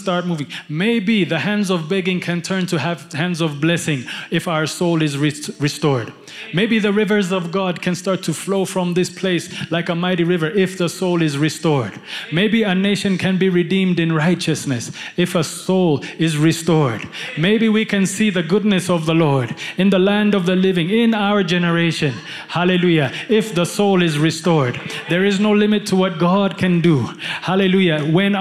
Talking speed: 185 wpm